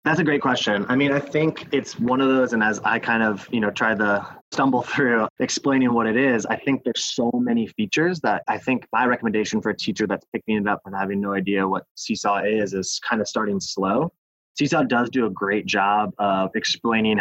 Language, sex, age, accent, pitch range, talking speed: English, male, 20-39, American, 100-125 Hz, 225 wpm